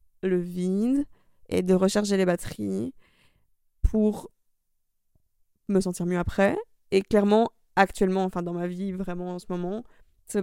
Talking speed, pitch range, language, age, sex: 140 wpm, 185-215 Hz, French, 20-39, female